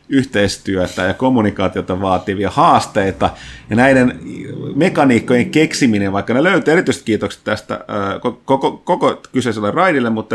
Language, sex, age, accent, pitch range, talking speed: Finnish, male, 30-49, native, 100-130 Hz, 115 wpm